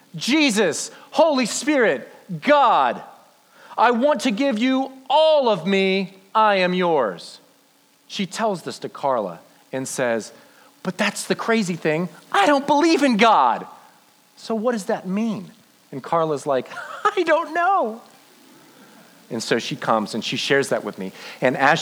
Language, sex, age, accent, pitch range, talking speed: English, male, 40-59, American, 140-230 Hz, 150 wpm